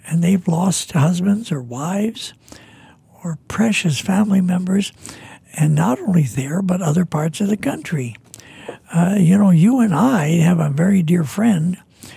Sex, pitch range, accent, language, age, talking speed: male, 150-205 Hz, American, English, 60-79, 155 wpm